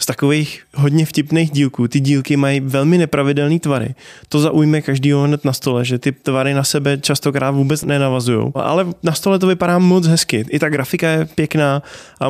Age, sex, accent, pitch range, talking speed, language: 20-39, male, native, 135-155 Hz, 185 wpm, Czech